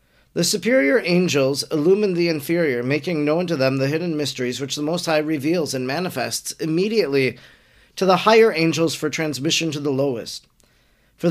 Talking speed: 165 wpm